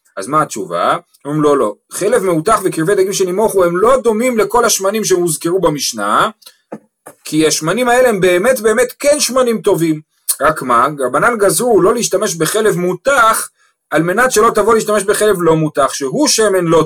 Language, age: Hebrew, 30-49